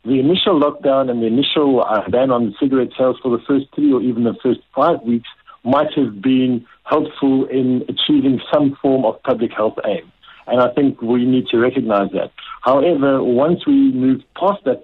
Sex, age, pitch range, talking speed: male, 60-79, 115-140 Hz, 190 wpm